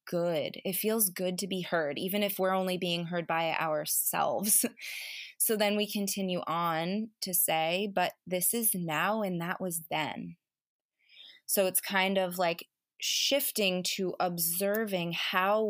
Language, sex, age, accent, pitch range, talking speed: English, female, 20-39, American, 180-220 Hz, 150 wpm